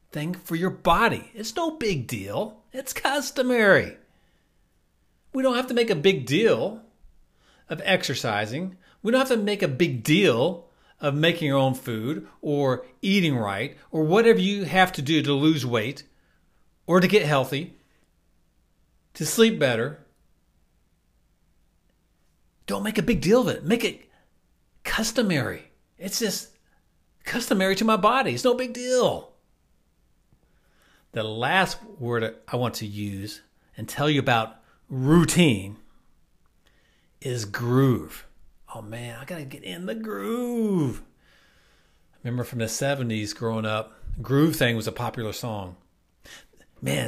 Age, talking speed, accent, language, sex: 40-59, 135 wpm, American, English, male